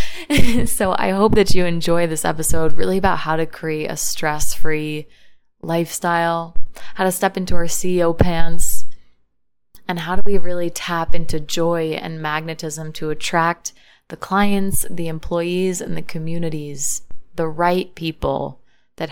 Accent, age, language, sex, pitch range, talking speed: American, 20-39, English, female, 155-180 Hz, 145 wpm